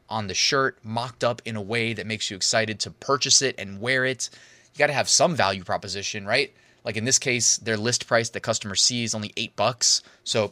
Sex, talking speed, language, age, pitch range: male, 220 wpm, English, 20-39, 105-125 Hz